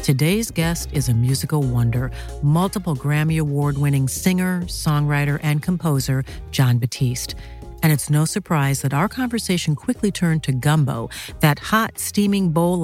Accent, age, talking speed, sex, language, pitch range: American, 50-69, 140 wpm, female, English, 140-175 Hz